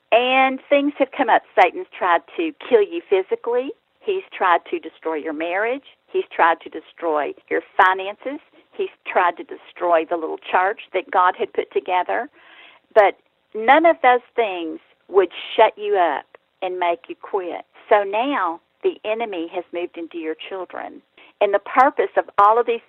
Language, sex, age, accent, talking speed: English, female, 50-69, American, 170 wpm